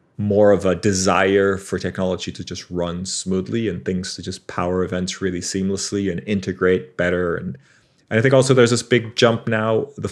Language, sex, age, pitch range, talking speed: English, male, 30-49, 95-115 Hz, 190 wpm